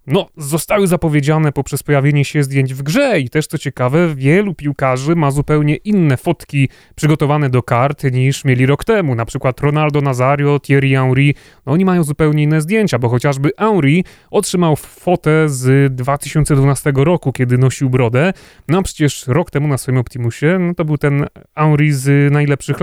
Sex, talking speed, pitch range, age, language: male, 165 wpm, 130-160 Hz, 30-49, Polish